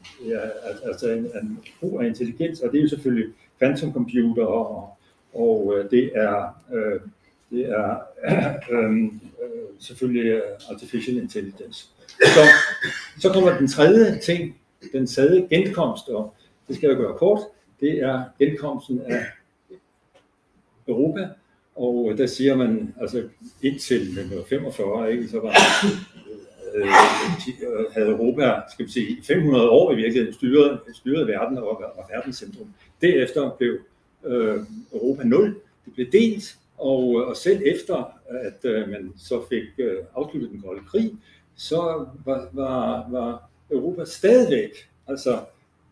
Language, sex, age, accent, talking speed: Danish, male, 60-79, native, 130 wpm